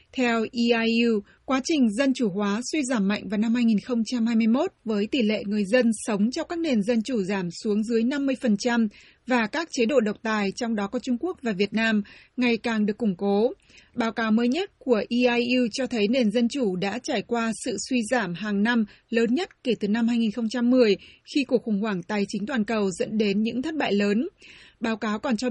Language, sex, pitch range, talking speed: Vietnamese, female, 210-250 Hz, 210 wpm